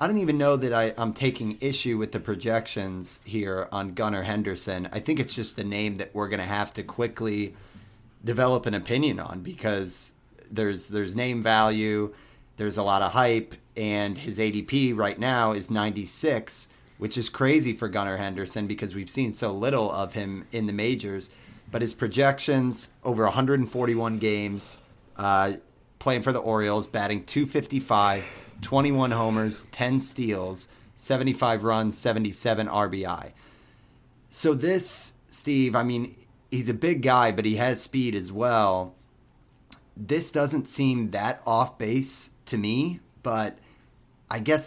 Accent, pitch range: American, 105-125 Hz